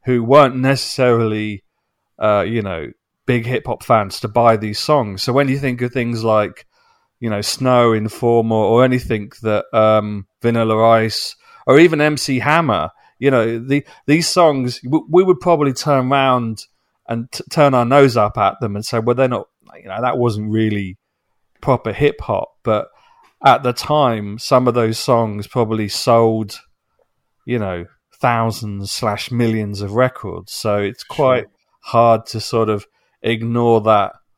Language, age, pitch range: English, 40-59, 105-130 Hz